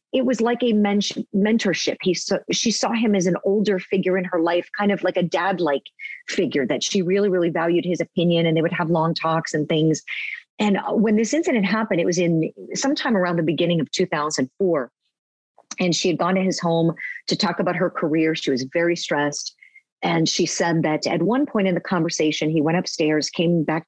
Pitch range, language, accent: 160-205 Hz, English, American